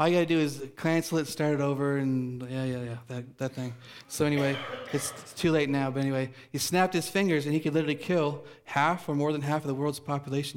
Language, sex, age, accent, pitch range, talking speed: English, male, 40-59, American, 135-160 Hz, 255 wpm